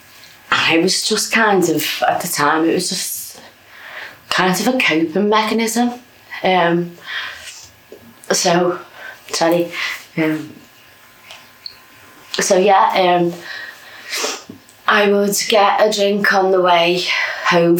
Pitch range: 160-195 Hz